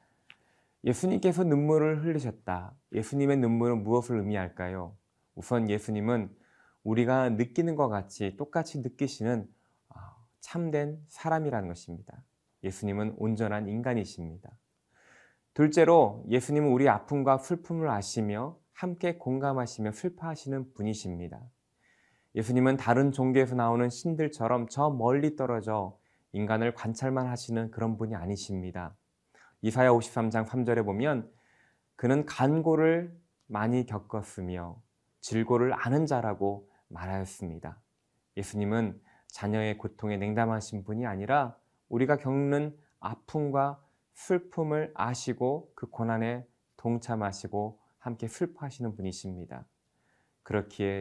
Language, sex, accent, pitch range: Korean, male, native, 105-140 Hz